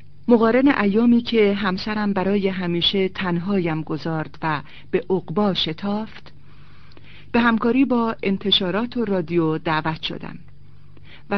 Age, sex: 40-59, female